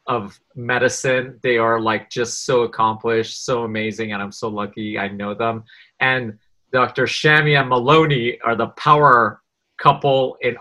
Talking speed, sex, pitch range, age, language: 155 wpm, male, 110-125 Hz, 30-49, English